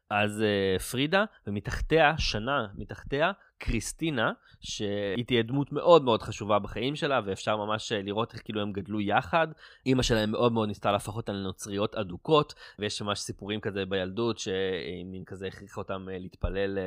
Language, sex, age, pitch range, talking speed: Hebrew, male, 20-39, 95-115 Hz, 145 wpm